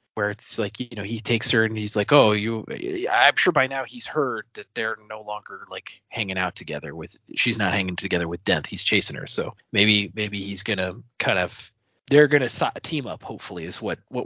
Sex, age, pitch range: male, 20-39, 110-155 Hz